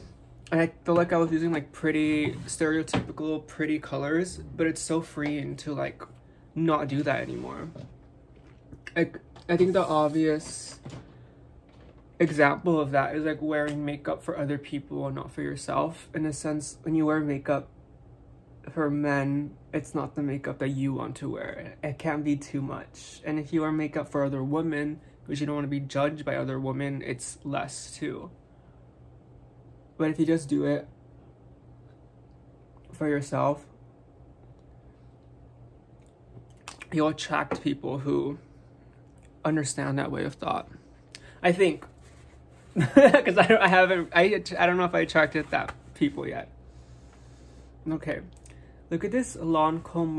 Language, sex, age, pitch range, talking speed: English, male, 20-39, 135-160 Hz, 145 wpm